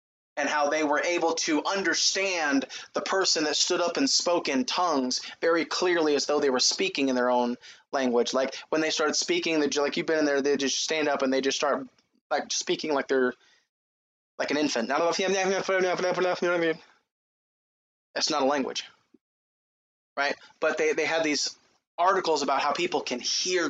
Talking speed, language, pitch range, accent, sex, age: 175 wpm, English, 135-175 Hz, American, male, 20-39